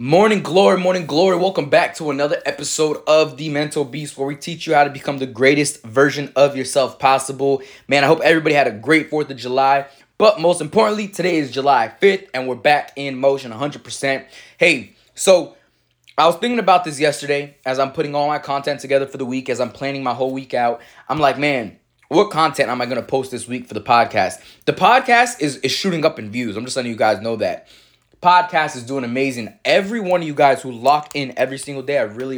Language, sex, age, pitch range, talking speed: English, male, 20-39, 130-160 Hz, 220 wpm